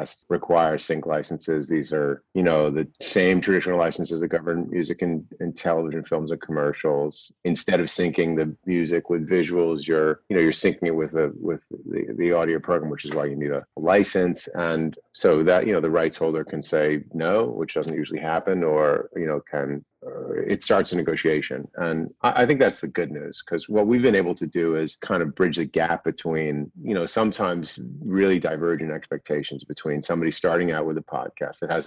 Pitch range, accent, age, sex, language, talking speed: 75-85 Hz, American, 40-59, male, English, 200 wpm